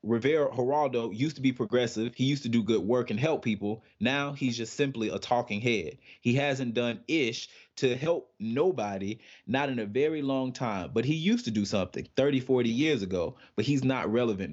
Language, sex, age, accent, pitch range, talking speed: English, male, 20-39, American, 110-130 Hz, 200 wpm